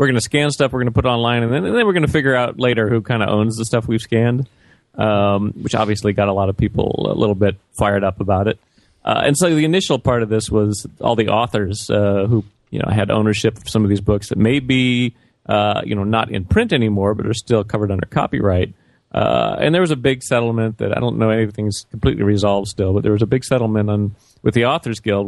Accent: American